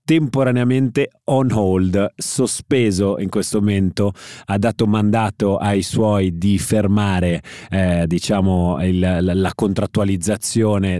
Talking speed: 110 wpm